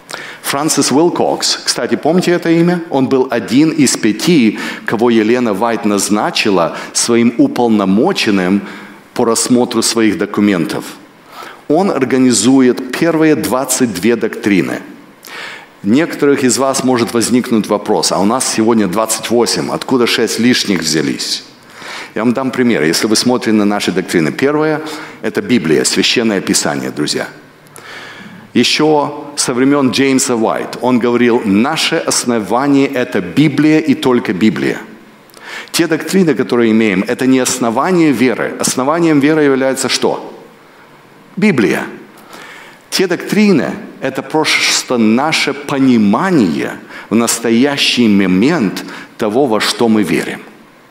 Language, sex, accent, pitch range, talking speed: Russian, male, native, 115-145 Hz, 115 wpm